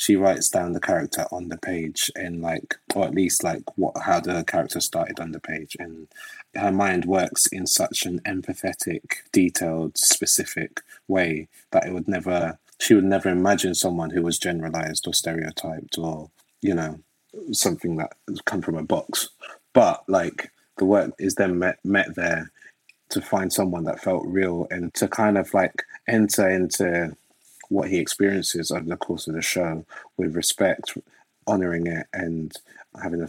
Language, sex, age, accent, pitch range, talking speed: English, male, 20-39, British, 85-100 Hz, 170 wpm